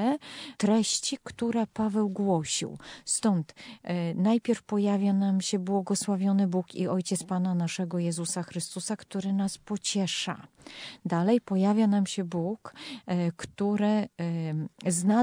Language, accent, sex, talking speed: Polish, native, female, 105 wpm